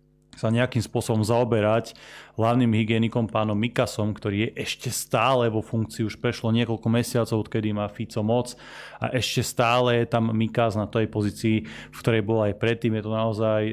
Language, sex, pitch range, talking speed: Slovak, male, 105-115 Hz, 170 wpm